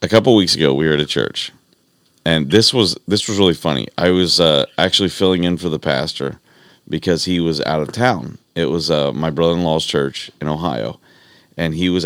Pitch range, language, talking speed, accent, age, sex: 75-90 Hz, English, 215 wpm, American, 30-49, male